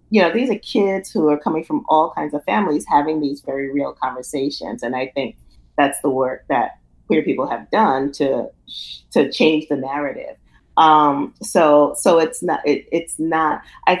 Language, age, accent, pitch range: English, 30-49, American, 140-155 Hz